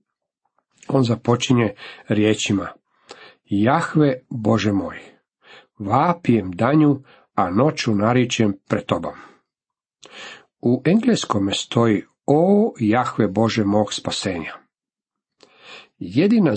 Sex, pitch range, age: male, 110-145 Hz, 50-69